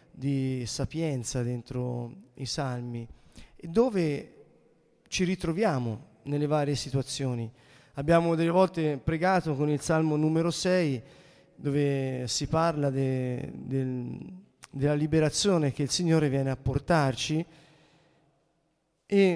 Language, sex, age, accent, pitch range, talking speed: Italian, male, 30-49, native, 140-165 Hz, 110 wpm